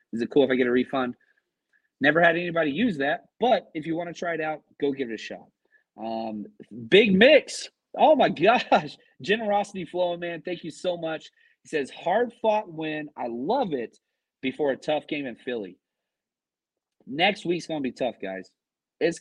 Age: 30-49